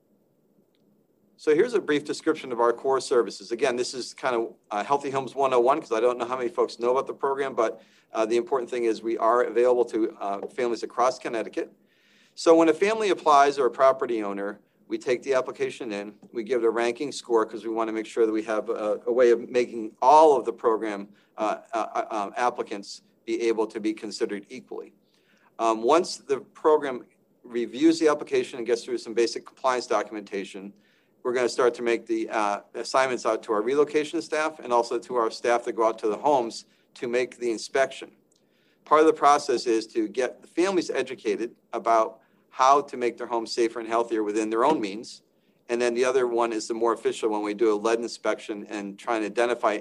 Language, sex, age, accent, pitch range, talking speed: English, male, 40-59, American, 115-160 Hz, 210 wpm